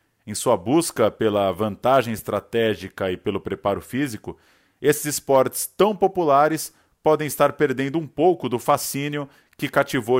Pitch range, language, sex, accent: 110-150 Hz, Portuguese, male, Brazilian